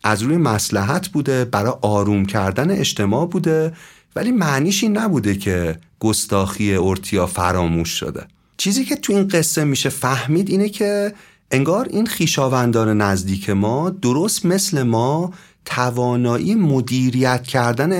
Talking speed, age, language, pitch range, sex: 125 wpm, 40-59, Persian, 105-160 Hz, male